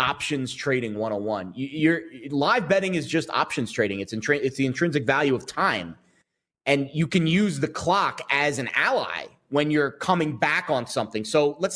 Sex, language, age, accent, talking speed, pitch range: male, English, 30-49, American, 185 wpm, 115-160 Hz